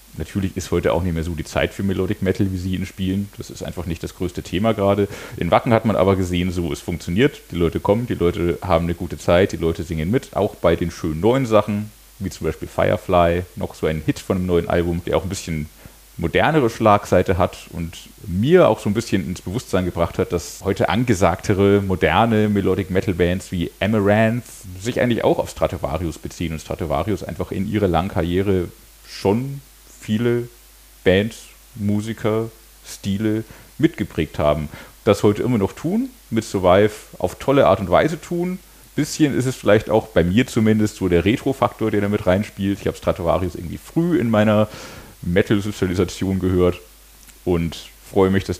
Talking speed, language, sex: 190 wpm, German, male